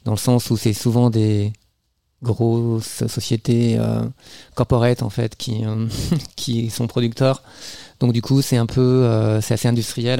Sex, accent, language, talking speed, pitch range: male, French, French, 165 wpm, 115-125 Hz